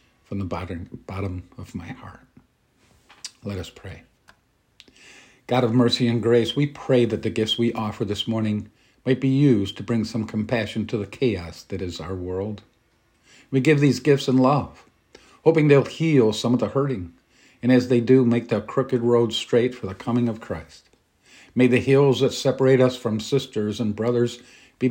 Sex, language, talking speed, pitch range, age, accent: male, English, 180 wpm, 100-125 Hz, 50-69, American